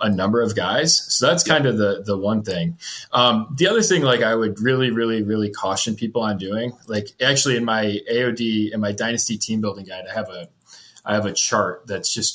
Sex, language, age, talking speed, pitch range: male, English, 20-39, 225 wpm, 100-120 Hz